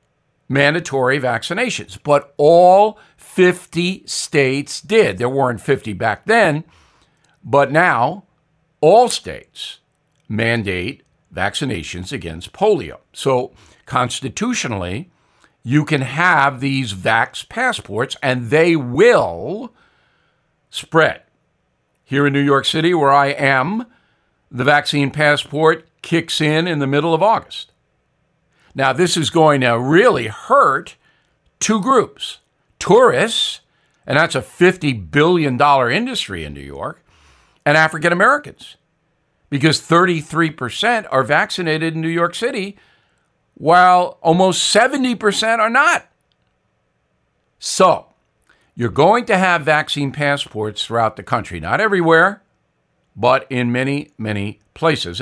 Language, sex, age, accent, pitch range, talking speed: English, male, 60-79, American, 125-170 Hz, 110 wpm